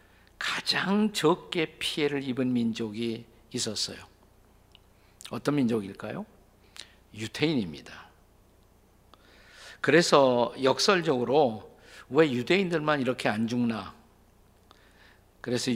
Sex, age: male, 50-69